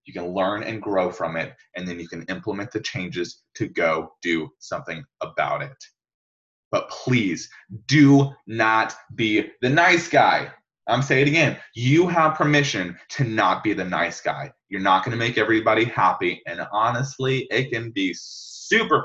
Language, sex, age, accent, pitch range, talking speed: English, male, 20-39, American, 95-130 Hz, 170 wpm